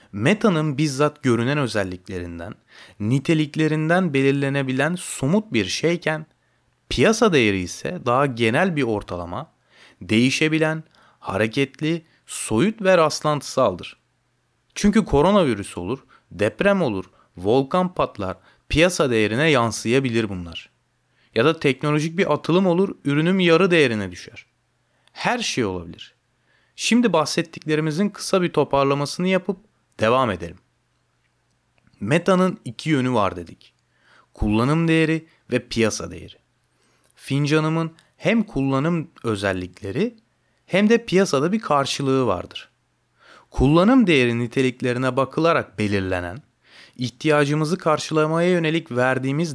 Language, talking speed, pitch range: Turkish, 100 wpm, 115-165 Hz